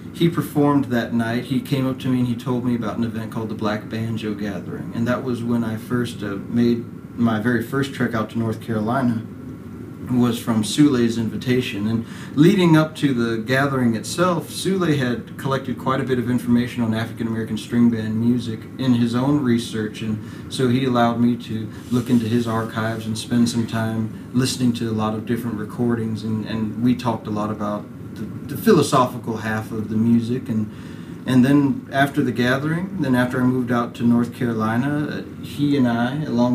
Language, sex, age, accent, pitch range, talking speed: English, male, 40-59, American, 110-125 Hz, 195 wpm